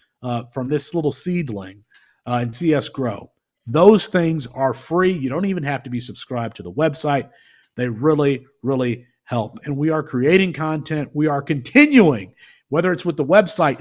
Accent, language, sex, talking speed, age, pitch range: American, English, male, 175 wpm, 50-69, 130-170 Hz